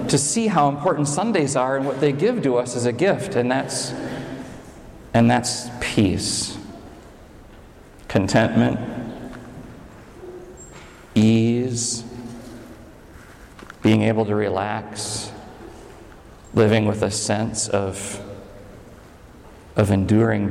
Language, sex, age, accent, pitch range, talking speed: English, male, 40-59, American, 115-190 Hz, 95 wpm